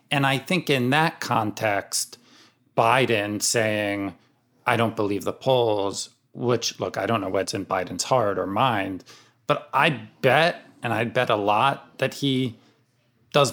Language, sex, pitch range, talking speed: English, male, 105-135 Hz, 155 wpm